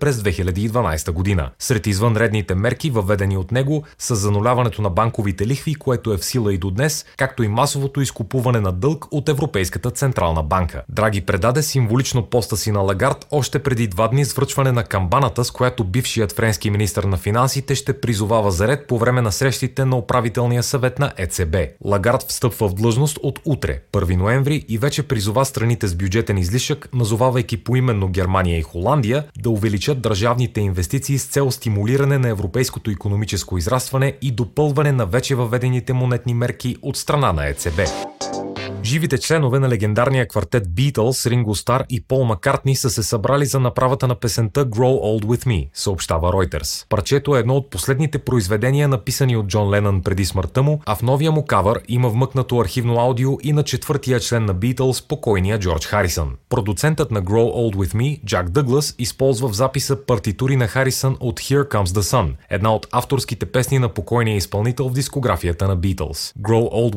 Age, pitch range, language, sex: 30-49, 105-135 Hz, Bulgarian, male